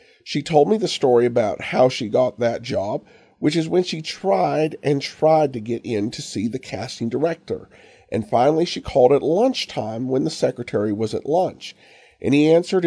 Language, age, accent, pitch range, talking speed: English, 50-69, American, 120-155 Hz, 190 wpm